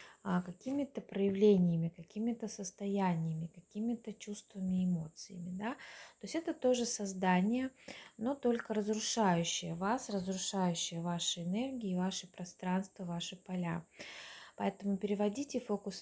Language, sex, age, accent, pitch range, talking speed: Russian, female, 20-39, native, 180-215 Hz, 105 wpm